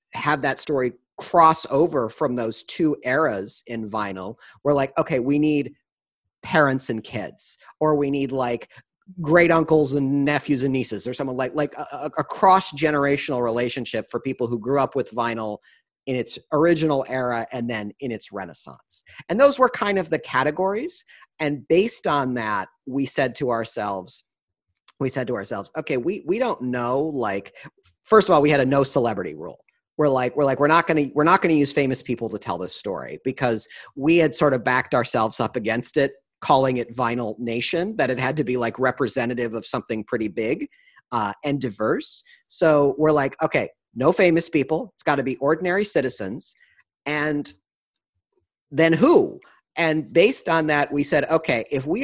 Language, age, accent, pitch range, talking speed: English, 40-59, American, 120-155 Hz, 180 wpm